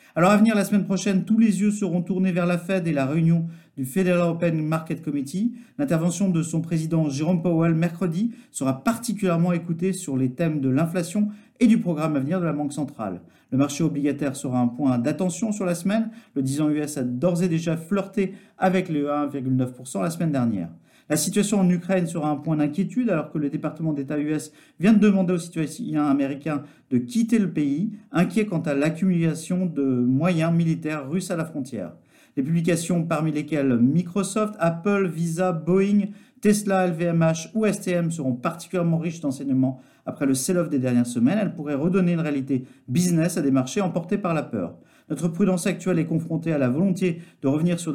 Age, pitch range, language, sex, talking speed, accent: 50-69, 150-195 Hz, French, male, 190 wpm, French